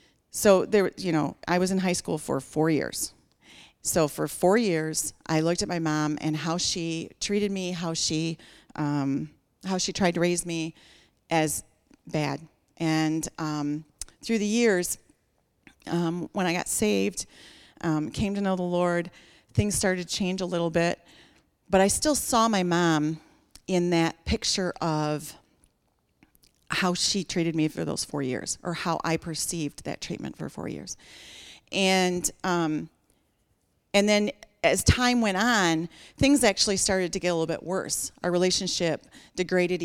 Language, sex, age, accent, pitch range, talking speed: English, female, 40-59, American, 160-190 Hz, 160 wpm